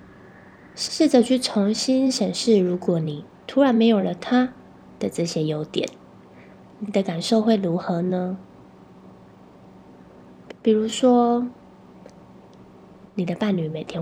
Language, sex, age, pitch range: Chinese, female, 20-39, 175-230 Hz